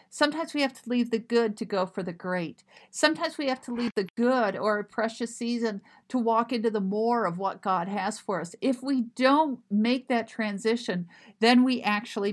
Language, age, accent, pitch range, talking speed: English, 50-69, American, 205-245 Hz, 210 wpm